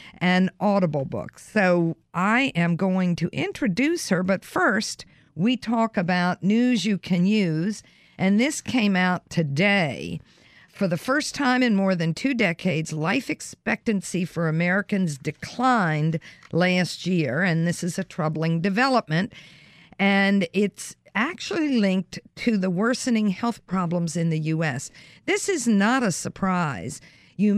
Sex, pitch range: female, 165-220 Hz